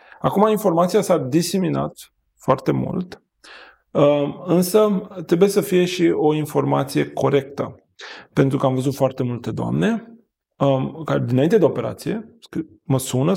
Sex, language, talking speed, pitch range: male, Romanian, 125 wpm, 125-165 Hz